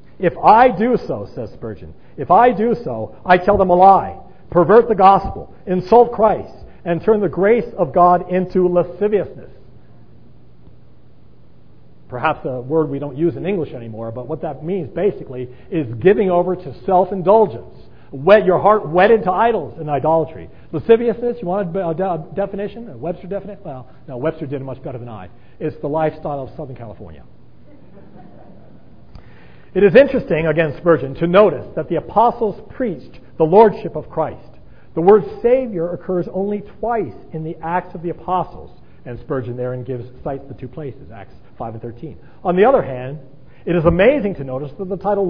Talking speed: 170 wpm